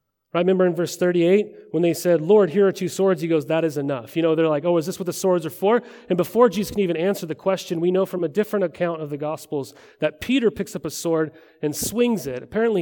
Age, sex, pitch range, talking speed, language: 30-49, male, 145-190 Hz, 265 wpm, English